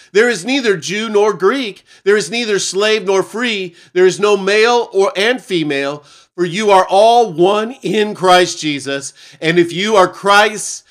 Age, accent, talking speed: 40-59, American, 175 wpm